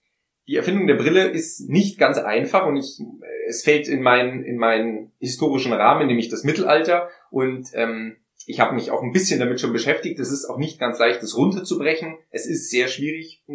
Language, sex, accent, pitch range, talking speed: German, male, German, 120-165 Hz, 190 wpm